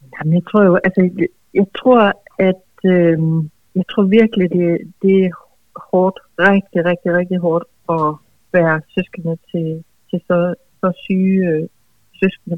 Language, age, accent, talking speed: Danish, 60-79, native, 145 wpm